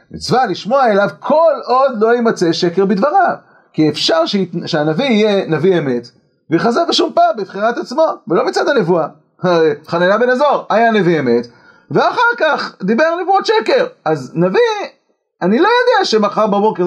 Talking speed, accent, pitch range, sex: 150 wpm, native, 175-240 Hz, male